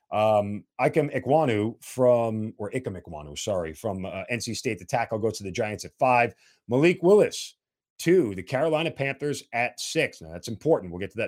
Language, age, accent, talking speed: English, 40-59, American, 180 wpm